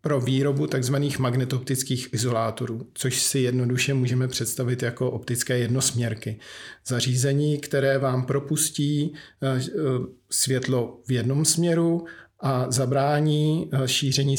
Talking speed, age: 100 wpm, 40-59